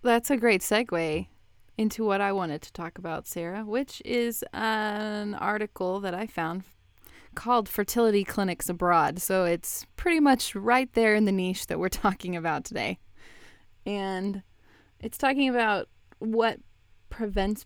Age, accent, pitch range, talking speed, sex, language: 20-39, American, 170-210 Hz, 145 wpm, female, English